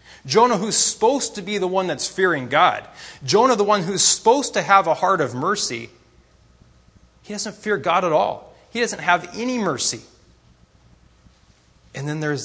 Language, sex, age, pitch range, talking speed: English, male, 30-49, 120-175 Hz, 170 wpm